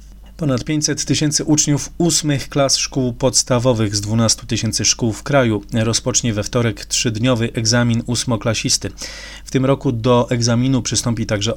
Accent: native